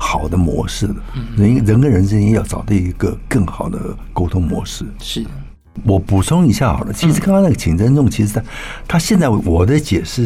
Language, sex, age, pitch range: Chinese, male, 60-79, 90-115 Hz